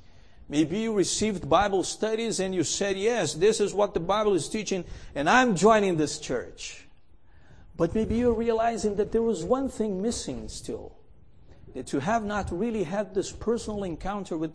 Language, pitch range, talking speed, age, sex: English, 145-210 Hz, 175 wpm, 50-69, male